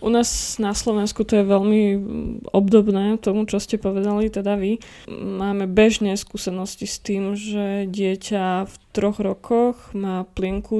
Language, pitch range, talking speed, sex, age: Slovak, 190-210 Hz, 145 wpm, female, 20-39